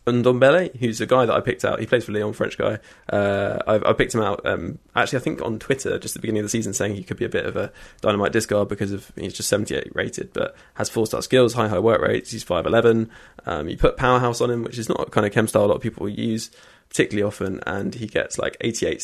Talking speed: 265 wpm